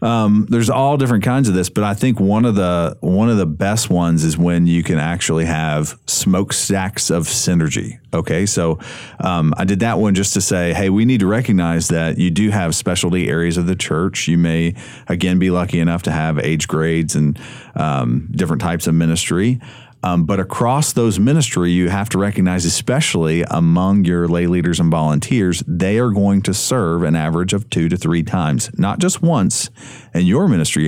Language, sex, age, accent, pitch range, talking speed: English, male, 40-59, American, 85-115 Hz, 195 wpm